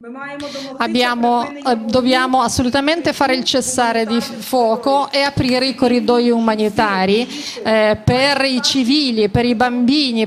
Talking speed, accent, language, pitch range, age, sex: 125 wpm, native, Italian, 235-275 Hz, 40-59, female